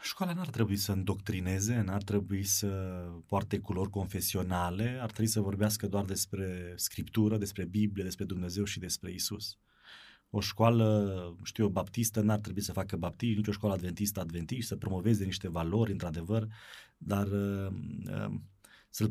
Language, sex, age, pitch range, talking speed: Romanian, male, 30-49, 90-105 Hz, 155 wpm